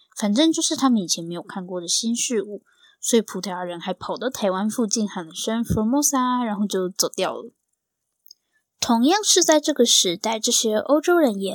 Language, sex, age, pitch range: Chinese, female, 10-29, 185-275 Hz